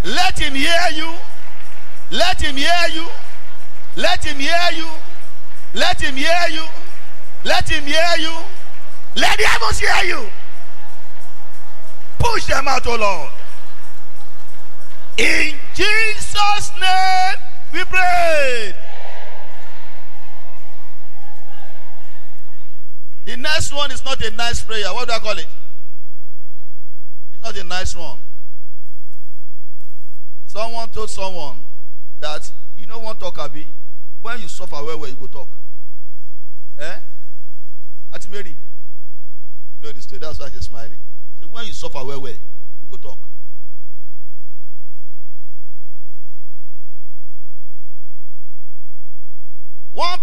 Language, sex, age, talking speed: English, male, 50-69, 110 wpm